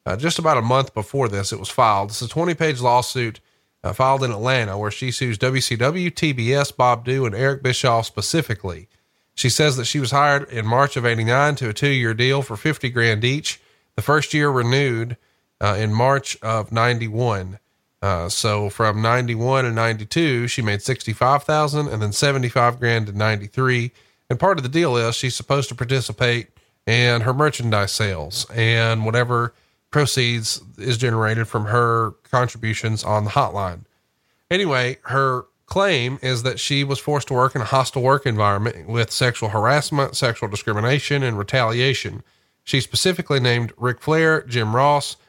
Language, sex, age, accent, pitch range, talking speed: English, male, 30-49, American, 110-135 Hz, 165 wpm